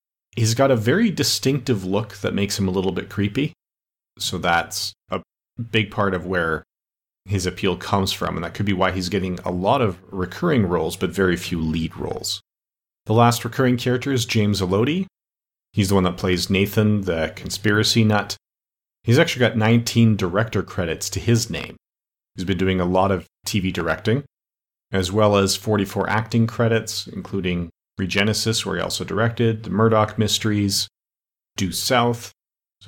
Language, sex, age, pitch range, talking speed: English, male, 40-59, 95-115 Hz, 170 wpm